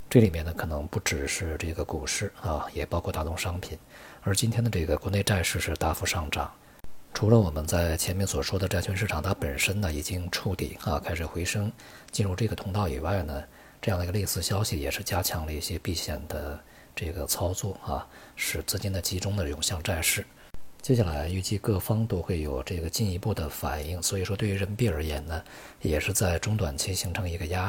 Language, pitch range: Chinese, 80-105 Hz